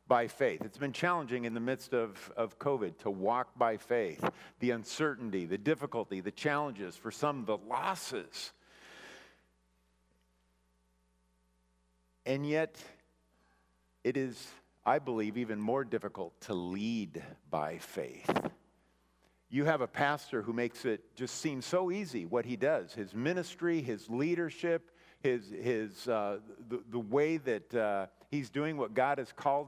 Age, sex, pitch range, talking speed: 50-69, male, 105-160 Hz, 140 wpm